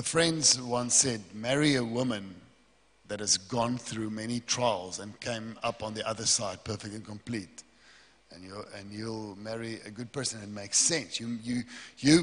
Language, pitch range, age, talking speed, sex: English, 115-150 Hz, 50-69, 175 wpm, male